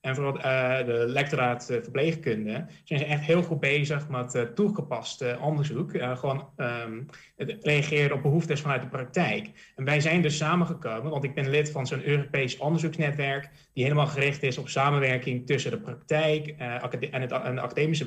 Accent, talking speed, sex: Dutch, 175 wpm, male